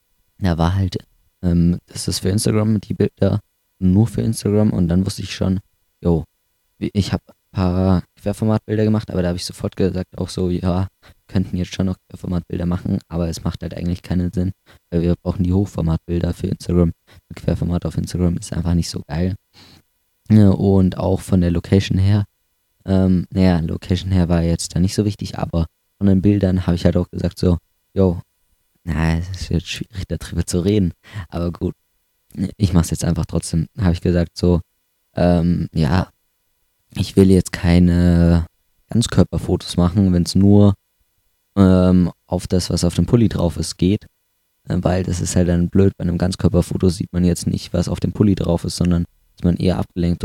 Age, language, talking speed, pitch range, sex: 20-39, German, 185 wpm, 85-95 Hz, male